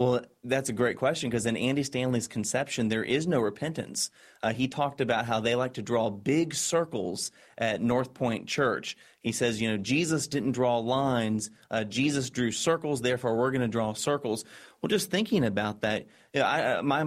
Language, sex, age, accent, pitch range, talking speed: English, male, 30-49, American, 120-140 Hz, 185 wpm